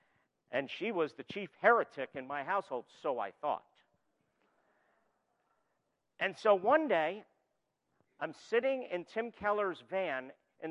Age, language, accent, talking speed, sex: 50-69, English, American, 130 wpm, male